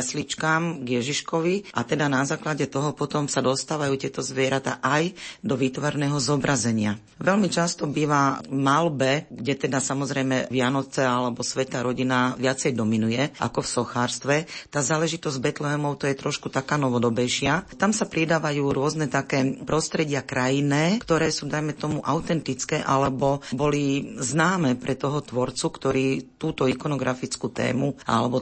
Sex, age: female, 40-59